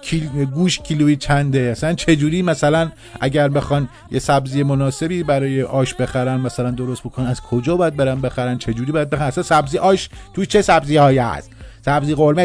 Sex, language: male, Persian